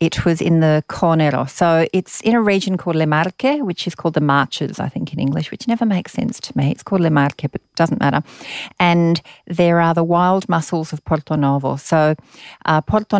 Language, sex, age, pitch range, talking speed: English, female, 40-59, 140-170 Hz, 220 wpm